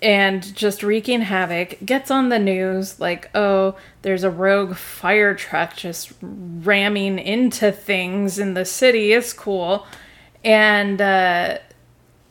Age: 20-39